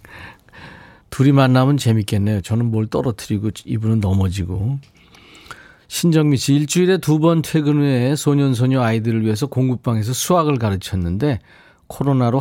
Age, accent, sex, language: 40-59, native, male, Korean